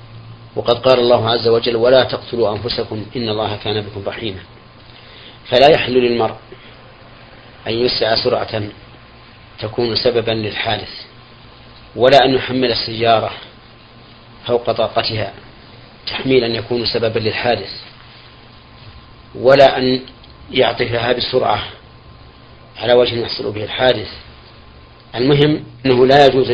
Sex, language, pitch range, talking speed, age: male, Arabic, 115-125 Hz, 100 wpm, 40-59